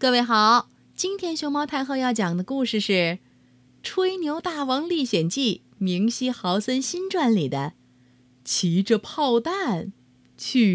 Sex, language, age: female, Chinese, 30-49